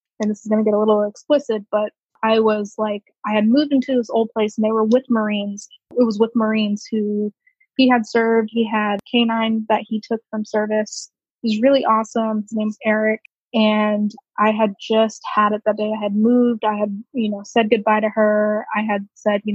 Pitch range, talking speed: 205-225 Hz, 215 wpm